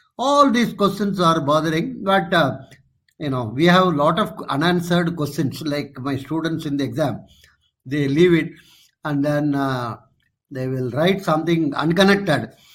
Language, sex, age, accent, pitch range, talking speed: English, male, 50-69, Indian, 135-175 Hz, 155 wpm